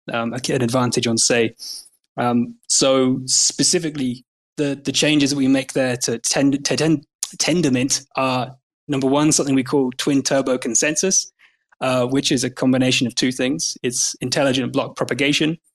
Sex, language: male, English